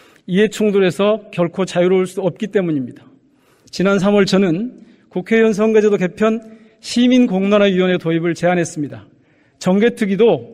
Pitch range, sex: 170-215 Hz, male